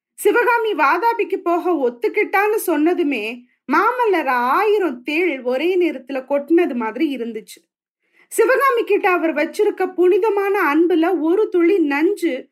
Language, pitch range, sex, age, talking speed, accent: Tamil, 285-395 Hz, female, 30-49, 105 wpm, native